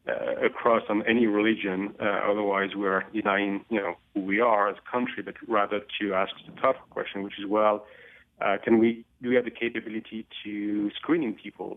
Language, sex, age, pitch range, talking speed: English, male, 40-59, 100-115 Hz, 200 wpm